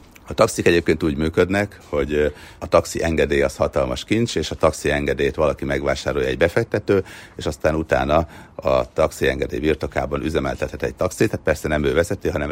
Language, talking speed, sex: Hungarian, 175 wpm, male